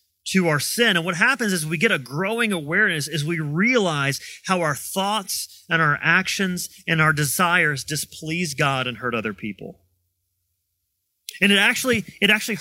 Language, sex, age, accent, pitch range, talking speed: English, male, 30-49, American, 135-195 Hz, 165 wpm